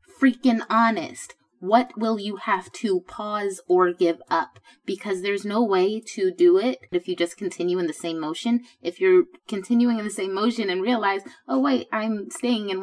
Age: 20-39